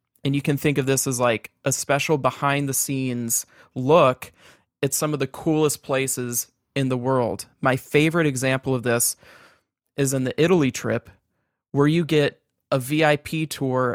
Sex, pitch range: male, 125-145 Hz